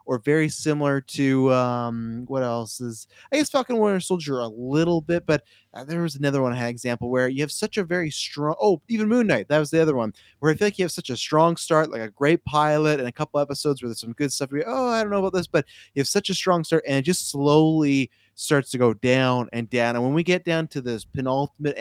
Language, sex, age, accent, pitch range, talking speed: English, male, 20-39, American, 120-155 Hz, 260 wpm